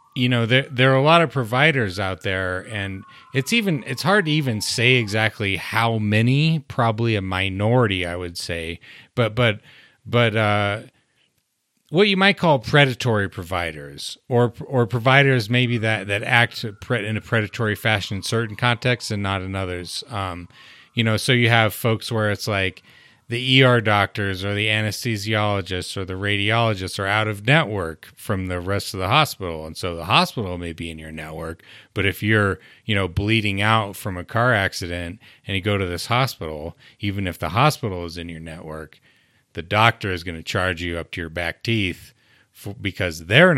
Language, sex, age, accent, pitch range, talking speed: English, male, 30-49, American, 95-125 Hz, 185 wpm